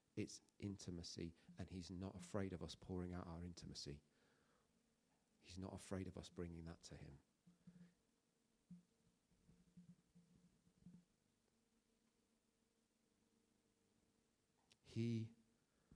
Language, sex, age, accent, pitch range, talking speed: English, male, 40-59, British, 100-135 Hz, 85 wpm